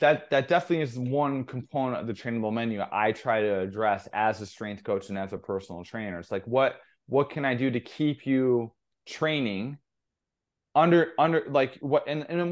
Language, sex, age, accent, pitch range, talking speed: English, male, 20-39, American, 105-135 Hz, 185 wpm